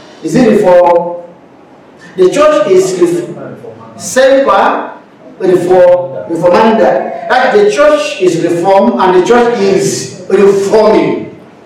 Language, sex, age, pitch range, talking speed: English, male, 50-69, 180-265 Hz, 80 wpm